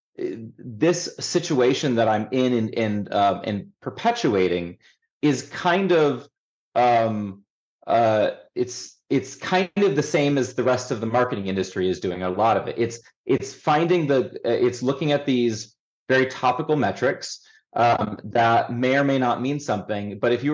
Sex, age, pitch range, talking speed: male, 30-49, 110-145 Hz, 160 wpm